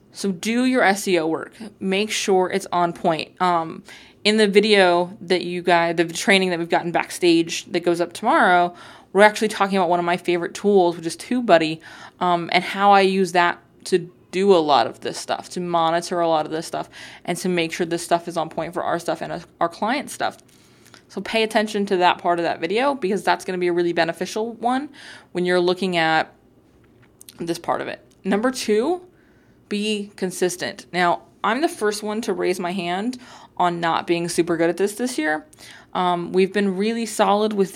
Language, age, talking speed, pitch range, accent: English, 20-39, 205 wpm, 175-210 Hz, American